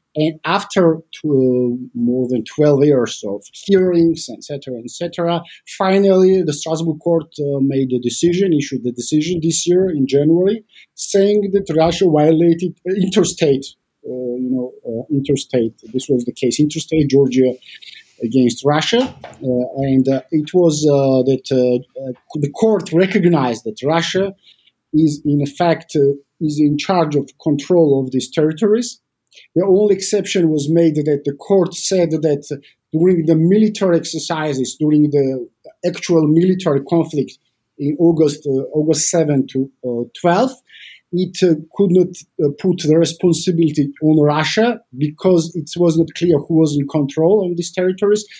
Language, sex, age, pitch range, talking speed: Finnish, male, 50-69, 140-180 Hz, 150 wpm